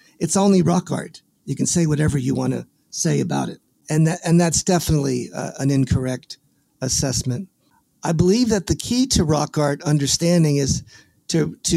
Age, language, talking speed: 50-69, English, 180 wpm